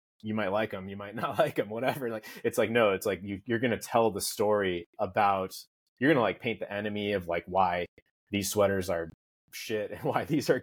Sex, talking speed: male, 230 wpm